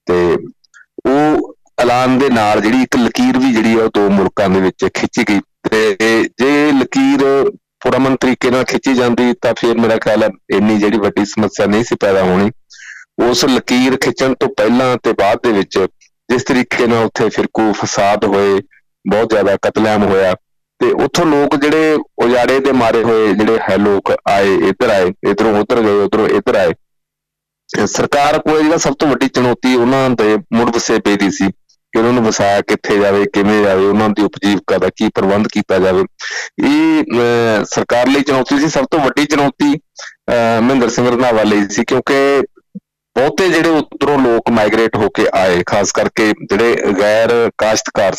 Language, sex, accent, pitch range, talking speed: English, male, Indian, 105-135 Hz, 70 wpm